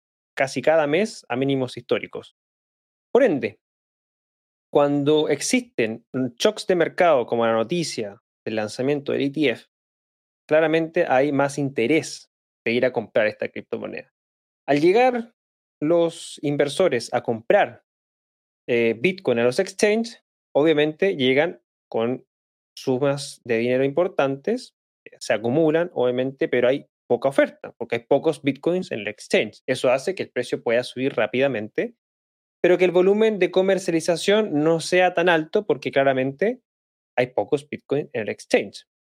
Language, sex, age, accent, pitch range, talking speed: Spanish, male, 20-39, Argentinian, 125-175 Hz, 135 wpm